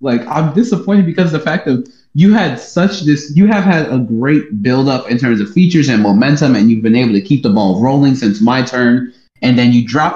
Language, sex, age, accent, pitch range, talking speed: English, male, 20-39, American, 120-155 Hz, 230 wpm